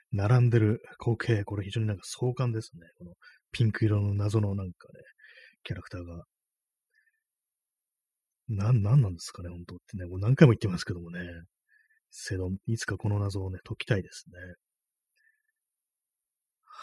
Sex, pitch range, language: male, 100-145 Hz, Japanese